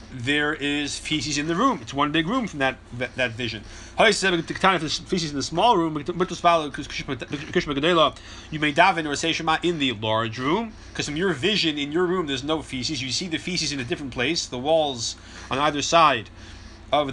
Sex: male